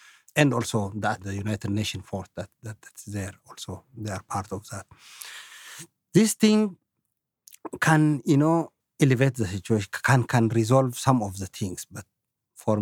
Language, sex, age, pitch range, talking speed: English, male, 50-69, 105-135 Hz, 160 wpm